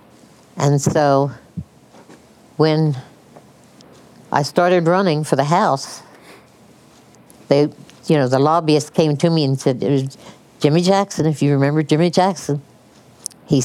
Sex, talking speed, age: female, 120 wpm, 60-79